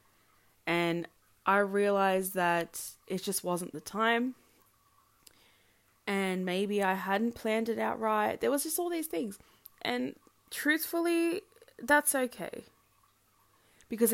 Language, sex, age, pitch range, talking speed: English, female, 20-39, 170-215 Hz, 120 wpm